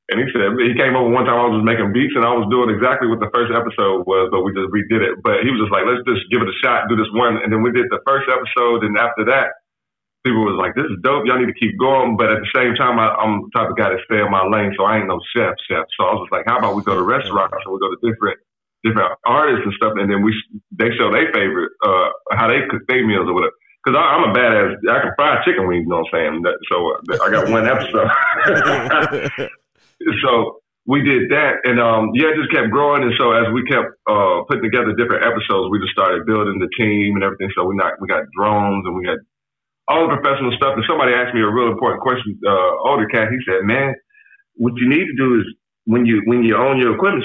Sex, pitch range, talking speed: male, 105-125 Hz, 265 wpm